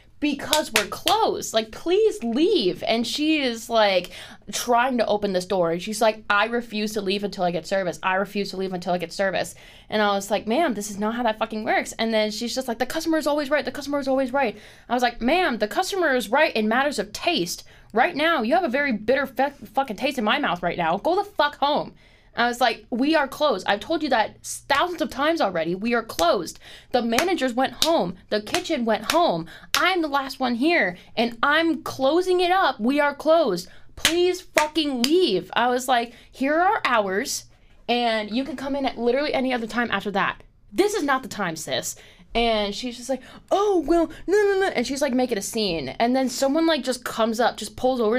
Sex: female